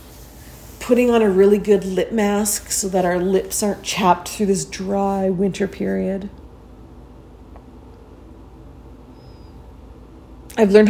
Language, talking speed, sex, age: English, 110 wpm, female, 40-59